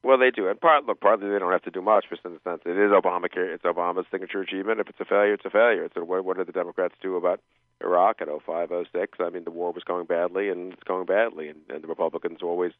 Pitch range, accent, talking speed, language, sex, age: 90-120 Hz, American, 285 wpm, English, male, 40-59